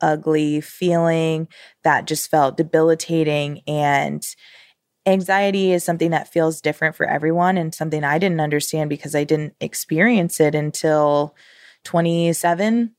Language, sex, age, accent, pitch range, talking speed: English, female, 20-39, American, 150-175 Hz, 125 wpm